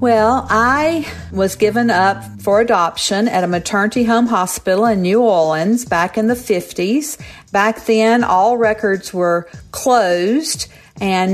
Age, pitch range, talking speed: 50-69, 170-215 Hz, 140 wpm